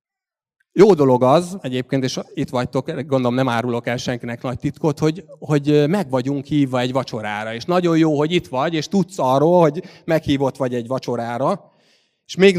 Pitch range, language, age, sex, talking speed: 125-160 Hz, Hungarian, 30-49, male, 175 wpm